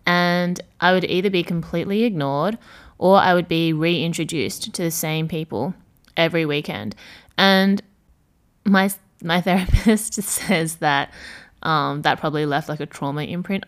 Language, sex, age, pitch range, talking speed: English, female, 20-39, 155-180 Hz, 140 wpm